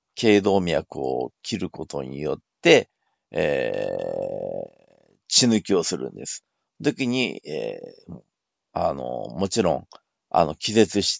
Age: 50-69